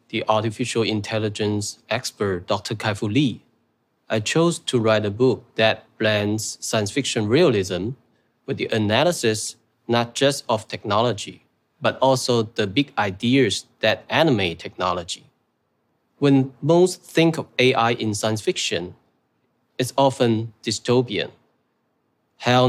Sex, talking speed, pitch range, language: male, 120 wpm, 115-140 Hz, Russian